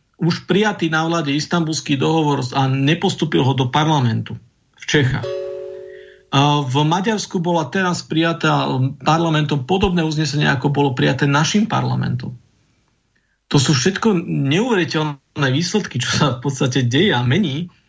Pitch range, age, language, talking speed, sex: 130-165 Hz, 40-59, Slovak, 130 wpm, male